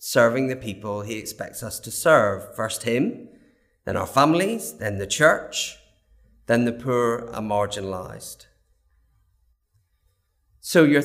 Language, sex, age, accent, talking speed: English, male, 30-49, British, 125 wpm